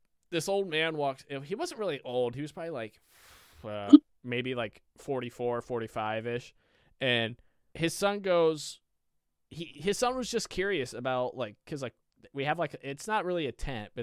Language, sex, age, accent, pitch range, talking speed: English, male, 20-39, American, 115-150 Hz, 170 wpm